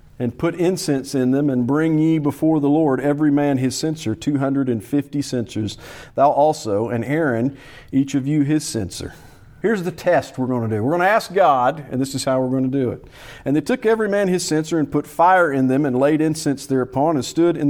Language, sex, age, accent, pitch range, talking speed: English, male, 50-69, American, 120-150 Hz, 225 wpm